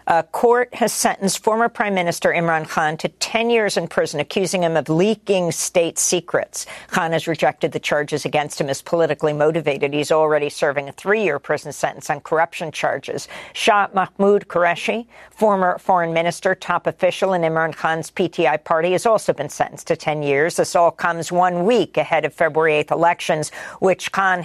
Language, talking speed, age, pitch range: English, 175 wpm, 50-69, 155-185 Hz